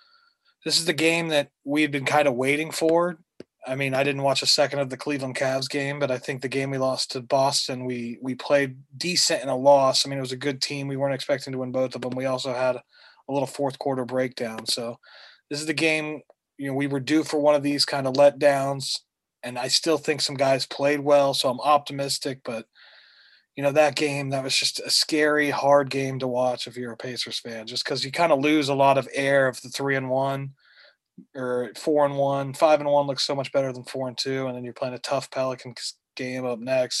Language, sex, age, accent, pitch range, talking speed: English, male, 30-49, American, 130-145 Hz, 240 wpm